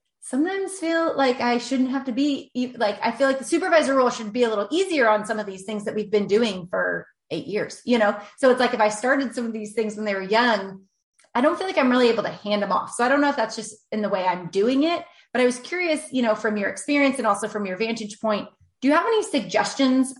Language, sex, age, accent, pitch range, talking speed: English, female, 30-49, American, 210-270 Hz, 275 wpm